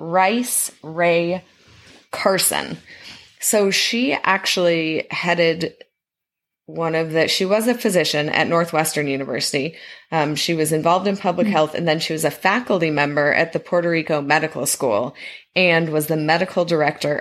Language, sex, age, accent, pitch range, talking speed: English, female, 20-39, American, 150-190 Hz, 145 wpm